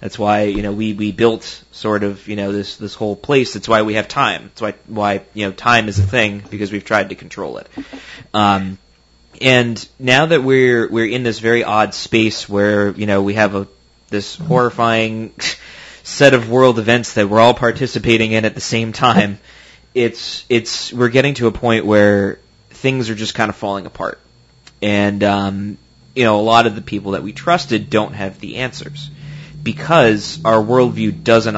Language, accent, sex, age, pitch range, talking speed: English, American, male, 20-39, 100-120 Hz, 195 wpm